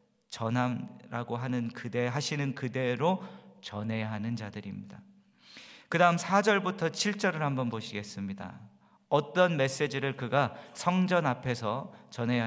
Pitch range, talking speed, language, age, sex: 120-175 Hz, 90 wpm, English, 40-59, male